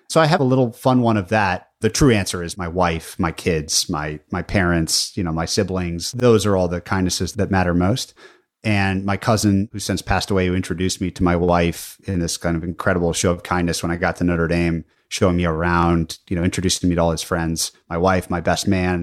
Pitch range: 90-110 Hz